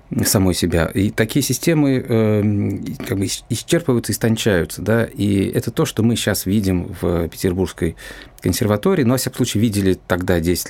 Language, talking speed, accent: Russian, 165 wpm, native